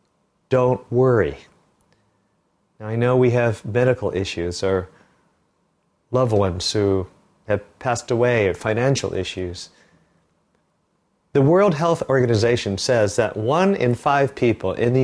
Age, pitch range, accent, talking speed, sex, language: 40-59, 110-145 Hz, American, 120 wpm, male, English